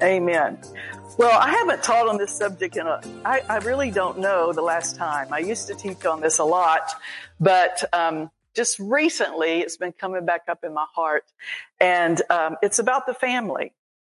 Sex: female